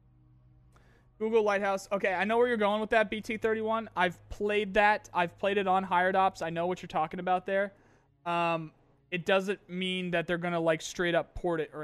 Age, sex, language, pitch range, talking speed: 20-39, male, English, 145-185 Hz, 210 wpm